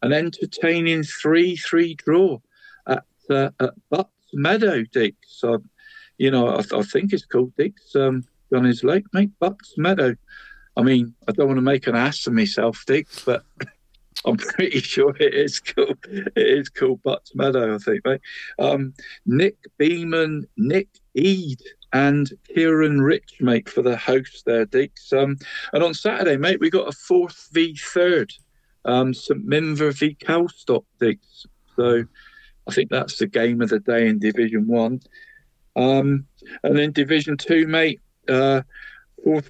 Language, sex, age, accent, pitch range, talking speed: English, male, 50-69, British, 125-170 Hz, 160 wpm